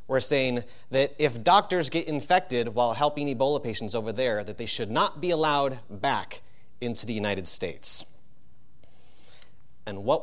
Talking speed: 155 wpm